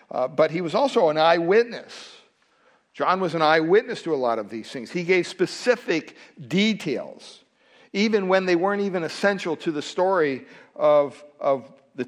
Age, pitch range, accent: 60-79, 135-170 Hz, American